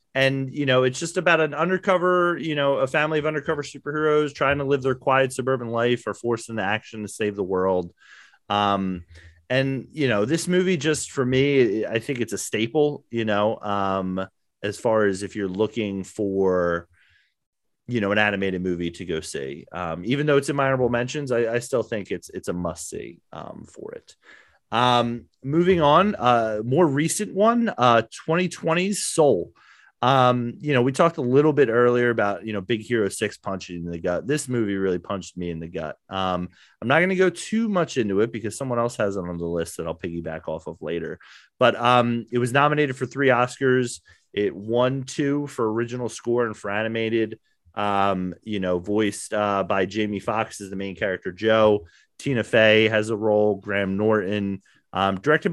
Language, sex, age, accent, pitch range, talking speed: English, male, 30-49, American, 100-140 Hz, 195 wpm